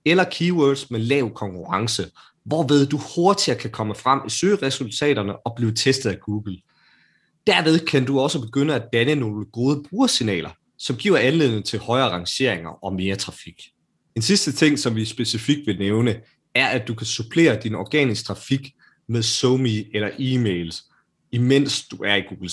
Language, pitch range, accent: Danish, 95-135 Hz, native